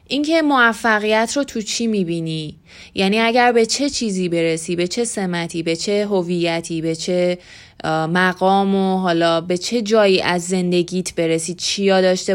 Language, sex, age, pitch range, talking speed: Persian, female, 20-39, 170-210 Hz, 150 wpm